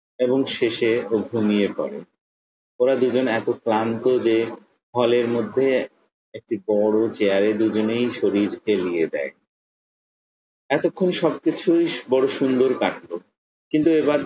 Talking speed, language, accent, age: 110 wpm, Bengali, native, 30-49